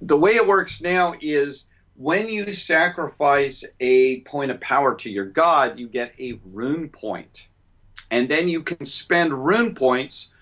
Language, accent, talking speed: English, American, 160 wpm